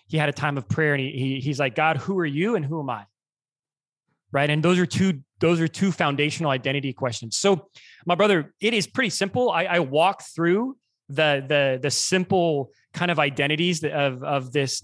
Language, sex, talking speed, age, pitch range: English, male, 205 wpm, 20-39, 130-155 Hz